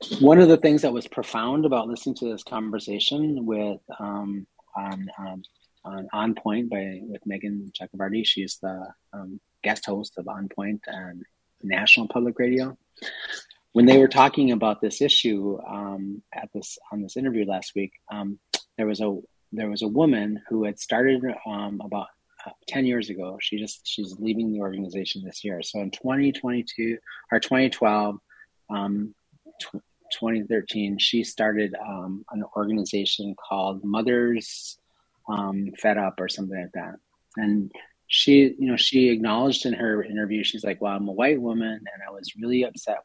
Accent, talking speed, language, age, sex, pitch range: American, 165 wpm, English, 30-49, male, 100-120 Hz